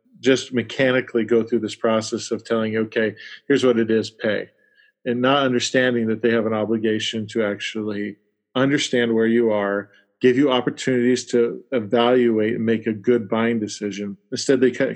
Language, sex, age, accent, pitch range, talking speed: English, male, 40-59, American, 110-130 Hz, 175 wpm